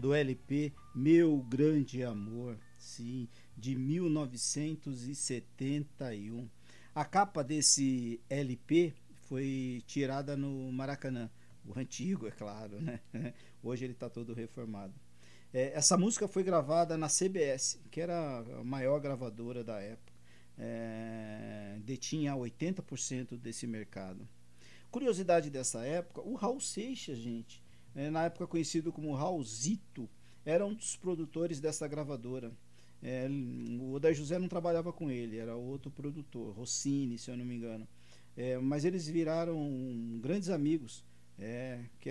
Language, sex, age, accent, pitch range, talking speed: Portuguese, male, 50-69, Brazilian, 120-160 Hz, 125 wpm